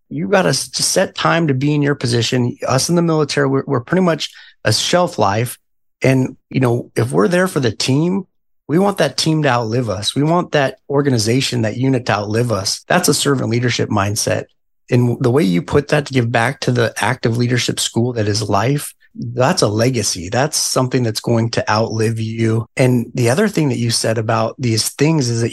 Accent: American